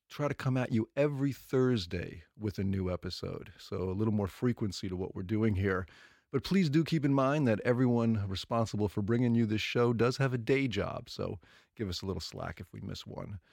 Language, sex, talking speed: English, male, 220 wpm